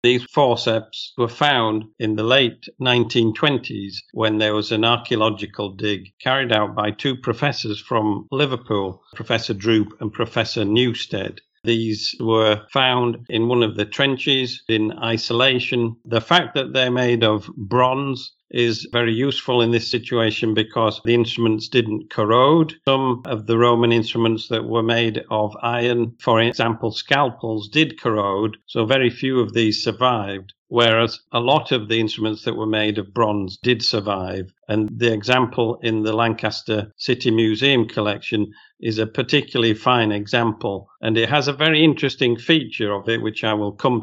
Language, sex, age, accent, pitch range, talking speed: English, male, 50-69, British, 110-125 Hz, 155 wpm